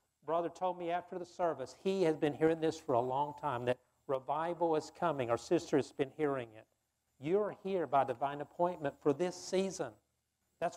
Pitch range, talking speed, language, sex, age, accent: 135-180 Hz, 195 wpm, English, male, 50-69, American